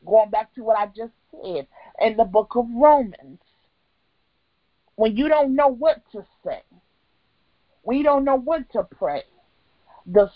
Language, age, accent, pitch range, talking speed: English, 40-59, American, 205-270 Hz, 155 wpm